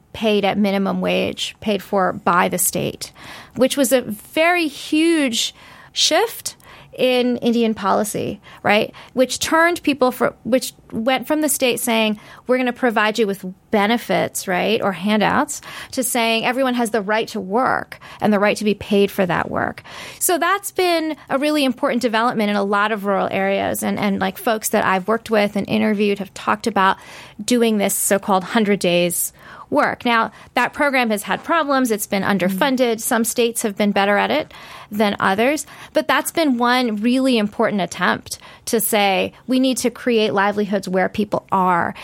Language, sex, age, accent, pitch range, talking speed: English, female, 30-49, American, 200-255 Hz, 175 wpm